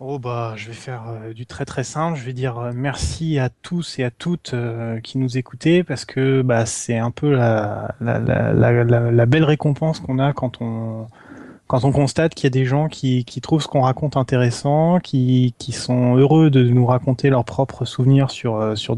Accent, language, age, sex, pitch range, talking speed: French, French, 20-39, male, 120-145 Hz, 205 wpm